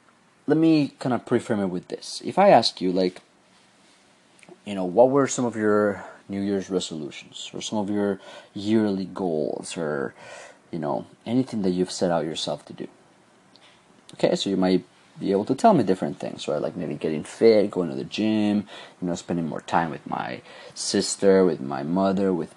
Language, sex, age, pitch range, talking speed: English, male, 30-49, 95-115 Hz, 190 wpm